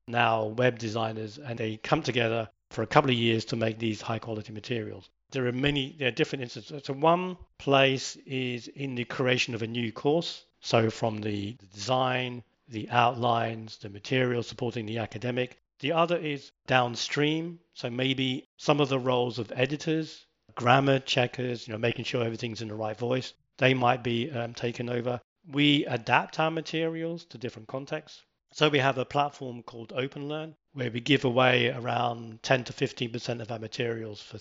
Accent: British